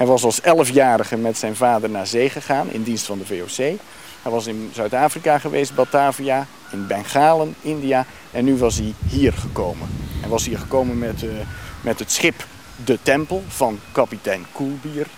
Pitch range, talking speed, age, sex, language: 110-140 Hz, 170 wpm, 50-69, male, Dutch